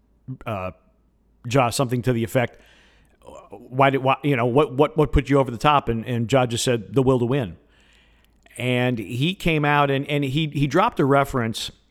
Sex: male